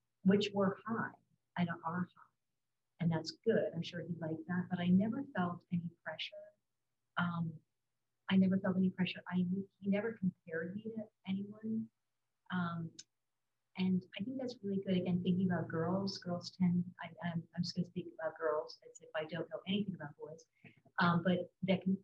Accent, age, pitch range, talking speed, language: American, 50-69, 165-190 Hz, 170 wpm, English